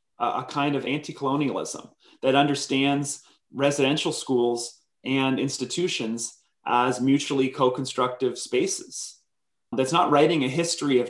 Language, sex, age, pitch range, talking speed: English, male, 30-49, 125-150 Hz, 110 wpm